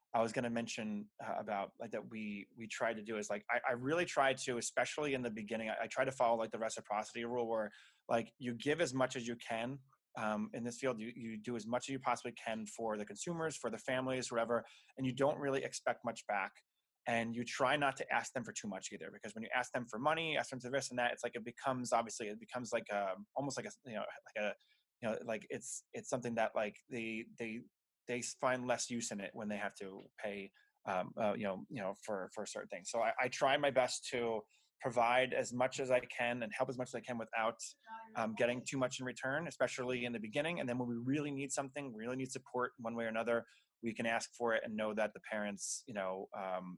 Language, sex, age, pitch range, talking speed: English, male, 20-39, 110-130 Hz, 255 wpm